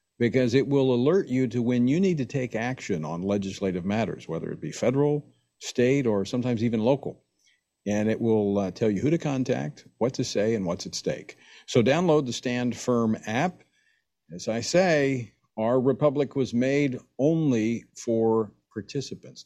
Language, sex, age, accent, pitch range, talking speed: English, male, 50-69, American, 100-135 Hz, 175 wpm